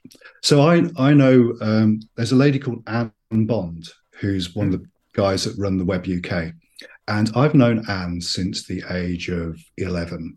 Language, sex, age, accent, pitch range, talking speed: English, male, 40-59, British, 90-120 Hz, 175 wpm